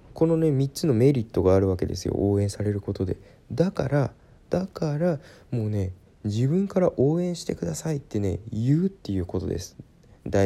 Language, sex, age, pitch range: Japanese, male, 20-39, 100-145 Hz